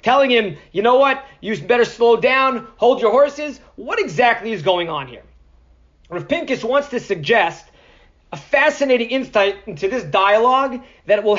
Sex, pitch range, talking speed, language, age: male, 220-280 Hz, 165 wpm, English, 30-49